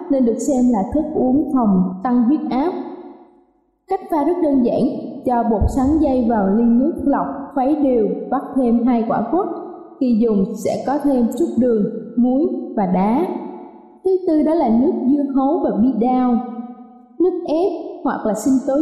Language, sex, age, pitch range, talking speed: Vietnamese, female, 20-39, 235-305 Hz, 180 wpm